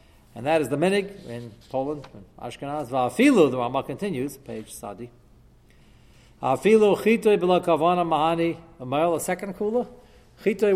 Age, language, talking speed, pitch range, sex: 40-59, English, 135 wpm, 120-185 Hz, male